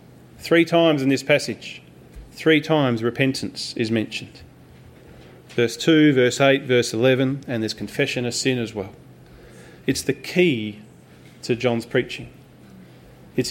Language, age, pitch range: English, 40-59, 115-160 Hz